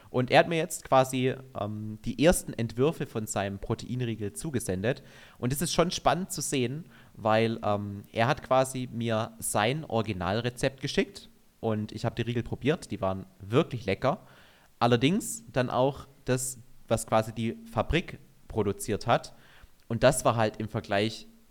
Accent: German